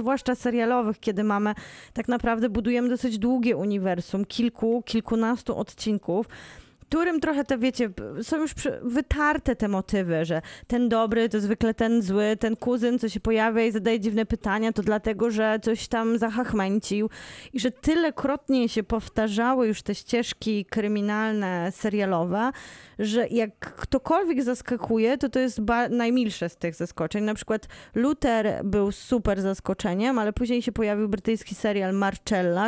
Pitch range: 200-245 Hz